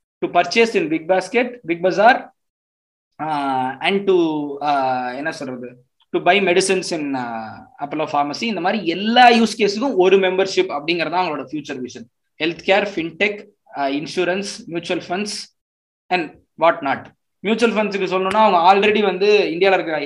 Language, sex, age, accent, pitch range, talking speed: Tamil, male, 20-39, native, 140-190 Hz, 135 wpm